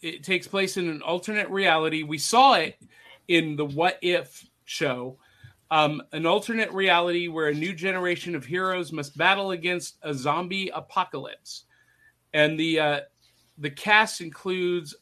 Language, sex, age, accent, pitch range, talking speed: English, male, 40-59, American, 155-195 Hz, 150 wpm